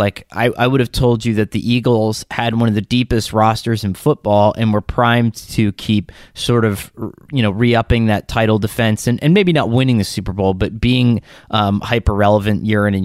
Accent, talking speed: American, 215 wpm